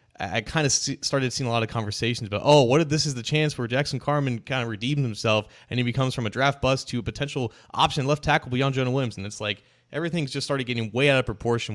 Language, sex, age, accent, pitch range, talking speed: English, male, 20-39, American, 105-130 Hz, 260 wpm